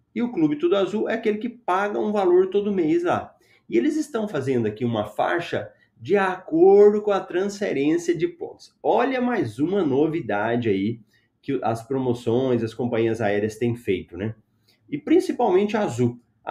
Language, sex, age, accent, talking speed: Portuguese, male, 30-49, Brazilian, 165 wpm